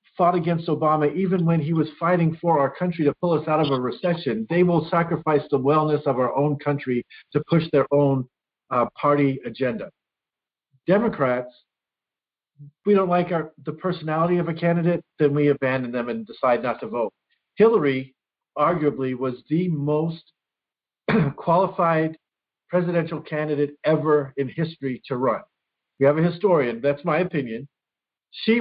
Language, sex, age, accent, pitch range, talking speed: English, male, 50-69, American, 140-175 Hz, 155 wpm